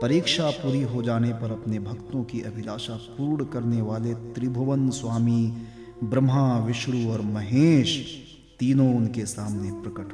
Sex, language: male, Hindi